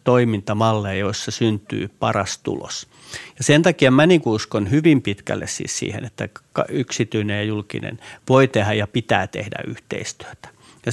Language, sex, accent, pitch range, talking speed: Finnish, male, native, 110-135 Hz, 145 wpm